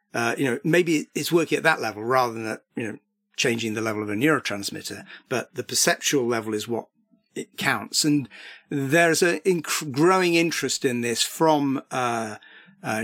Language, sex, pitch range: Bulgarian, male, 115-155 Hz